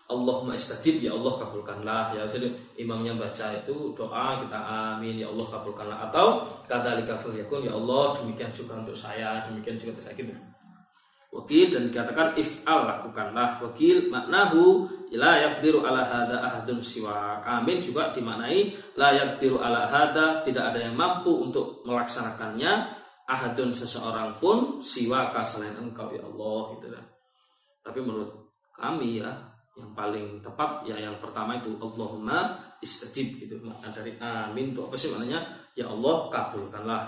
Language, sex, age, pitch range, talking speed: Malay, male, 20-39, 110-150 Hz, 145 wpm